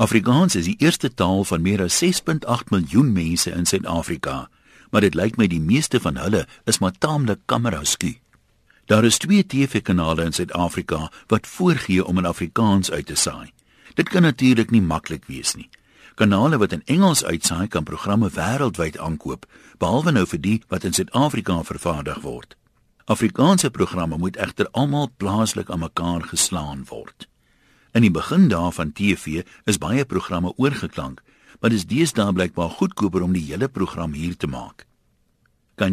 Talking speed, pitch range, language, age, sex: 170 wpm, 85-120 Hz, Dutch, 60-79, male